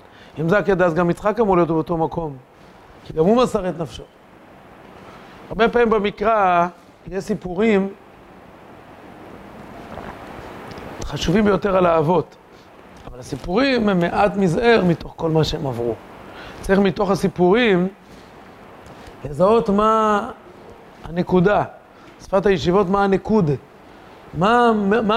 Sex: male